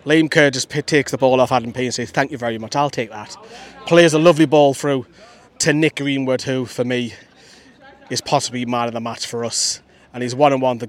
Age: 30-49